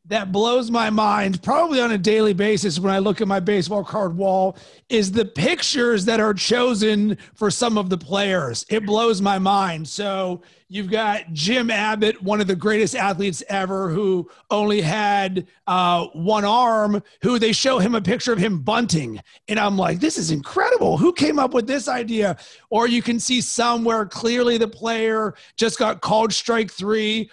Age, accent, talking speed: 30-49, American, 180 wpm